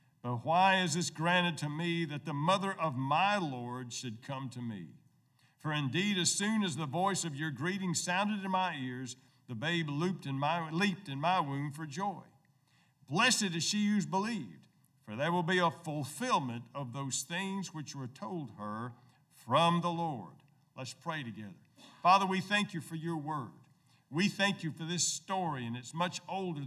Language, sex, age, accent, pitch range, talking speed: English, male, 50-69, American, 130-170 Hz, 185 wpm